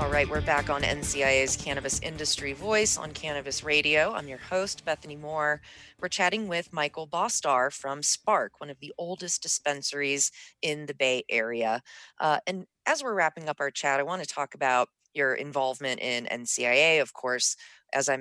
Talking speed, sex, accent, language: 180 wpm, female, American, English